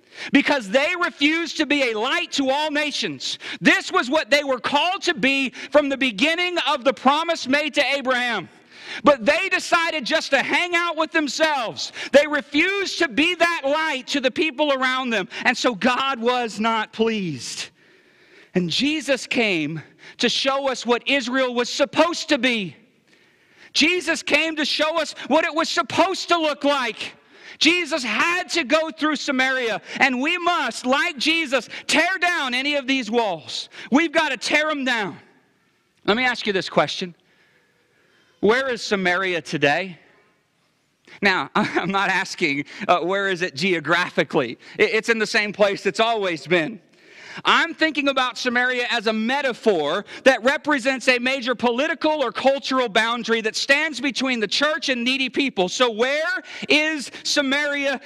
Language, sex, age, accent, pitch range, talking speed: English, male, 40-59, American, 235-310 Hz, 160 wpm